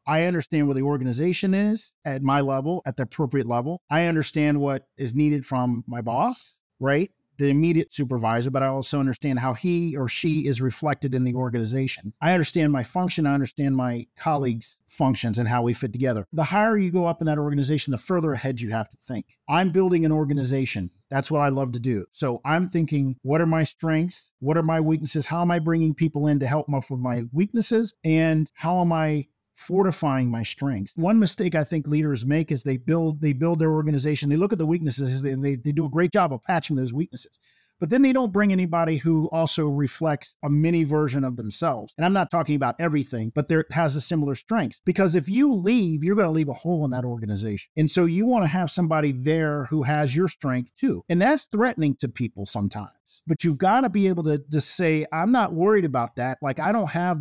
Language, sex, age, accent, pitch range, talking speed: English, male, 50-69, American, 135-170 Hz, 220 wpm